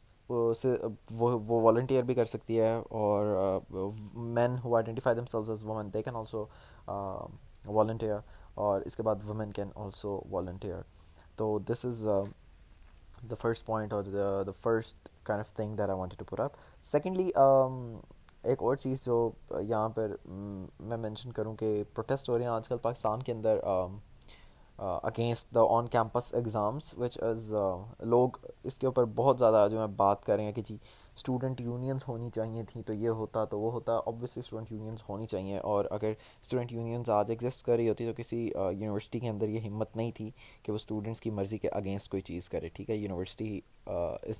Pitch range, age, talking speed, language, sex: 105-120 Hz, 20-39, 165 wpm, Urdu, male